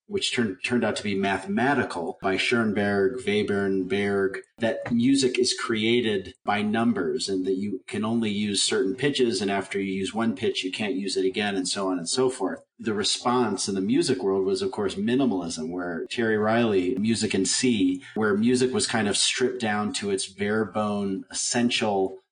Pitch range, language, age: 95-130 Hz, English, 40-59